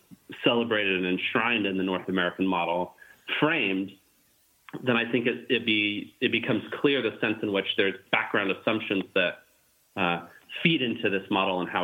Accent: American